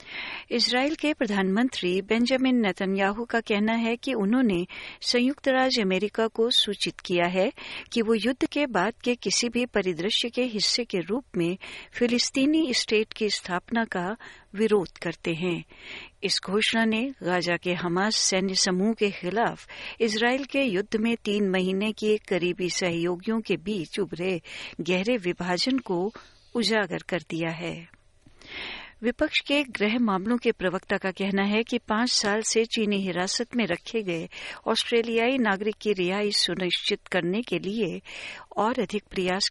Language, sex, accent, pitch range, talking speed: Hindi, female, native, 180-230 Hz, 150 wpm